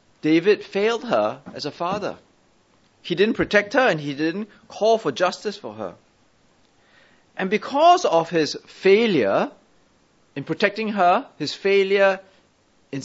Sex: male